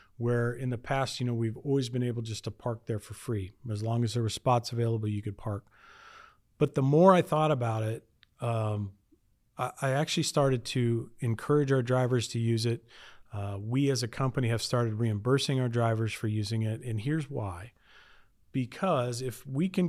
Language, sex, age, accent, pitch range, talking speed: English, male, 40-59, American, 115-140 Hz, 195 wpm